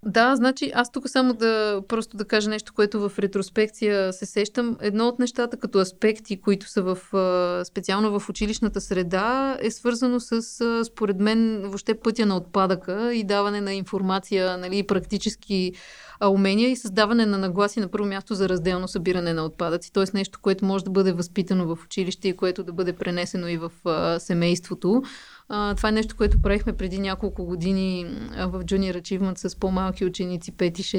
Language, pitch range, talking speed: Bulgarian, 185-210 Hz, 165 wpm